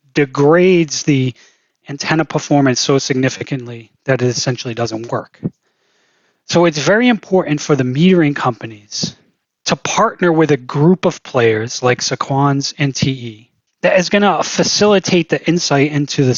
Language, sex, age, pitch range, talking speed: English, male, 20-39, 130-165 Hz, 145 wpm